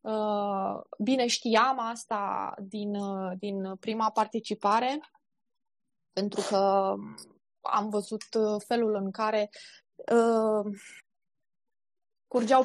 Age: 20-39